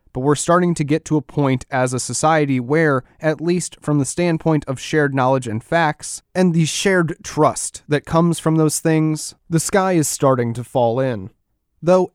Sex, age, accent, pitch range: male, 30-49, American, 130-160 Hz